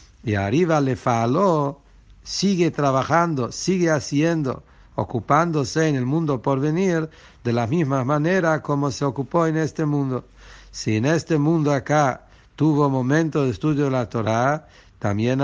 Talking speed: 145 wpm